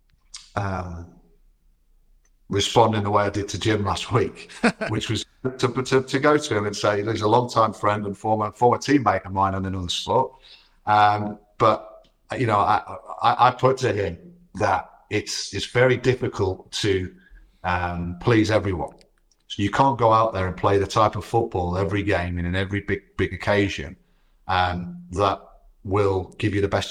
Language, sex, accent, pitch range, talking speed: English, male, British, 90-110 Hz, 180 wpm